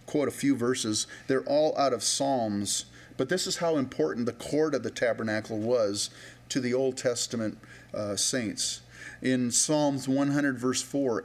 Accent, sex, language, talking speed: American, male, English, 165 wpm